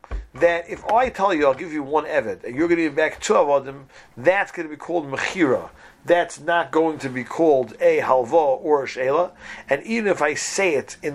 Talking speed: 220 wpm